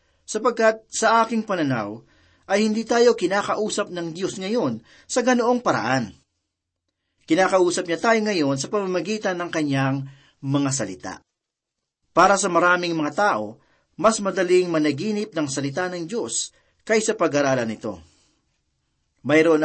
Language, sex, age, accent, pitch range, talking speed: Filipino, male, 40-59, native, 140-195 Hz, 120 wpm